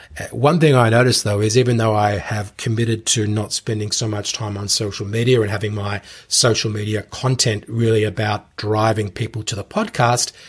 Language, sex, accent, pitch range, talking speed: English, male, Australian, 110-120 Hz, 190 wpm